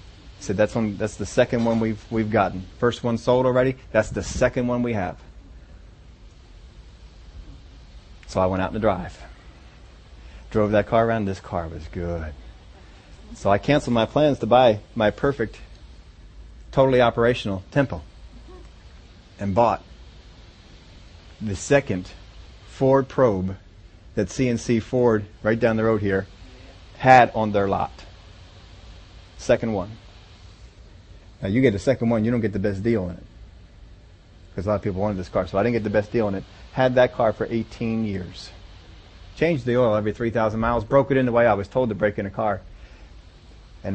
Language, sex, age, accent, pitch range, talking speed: English, male, 40-59, American, 90-115 Hz, 170 wpm